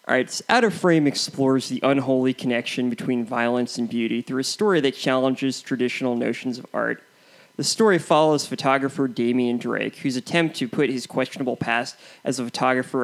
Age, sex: 20-39, male